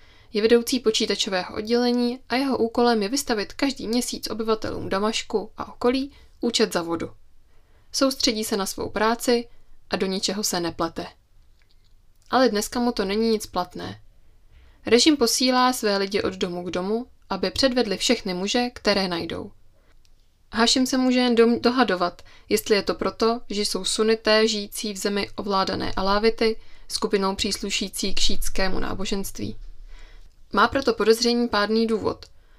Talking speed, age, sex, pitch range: 140 wpm, 20-39, female, 185-240 Hz